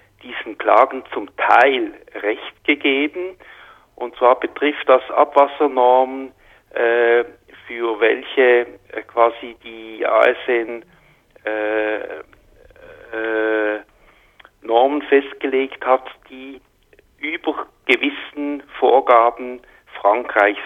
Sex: male